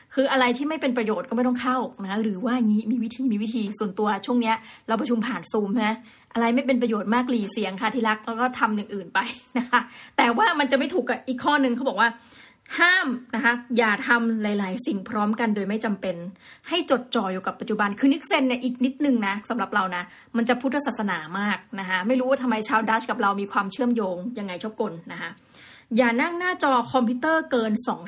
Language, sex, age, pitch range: Thai, female, 20-39, 215-260 Hz